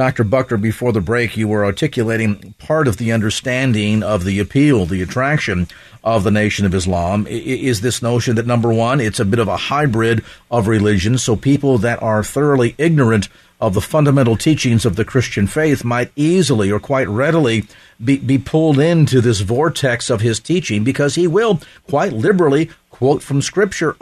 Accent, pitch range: American, 120-165 Hz